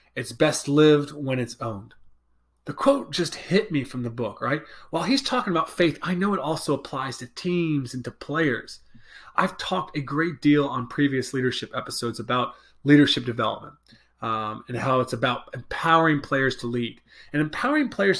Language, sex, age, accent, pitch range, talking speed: English, male, 30-49, American, 130-175 Hz, 180 wpm